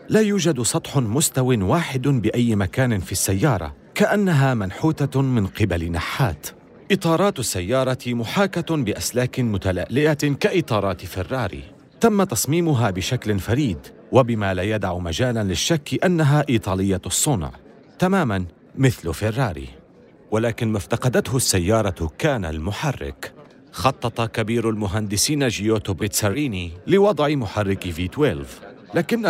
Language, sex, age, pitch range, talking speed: Arabic, male, 40-59, 95-145 Hz, 105 wpm